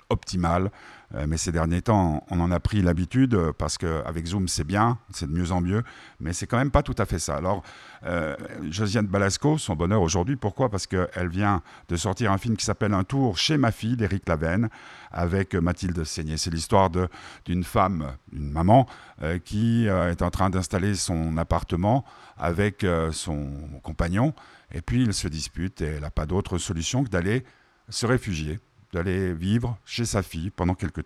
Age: 50-69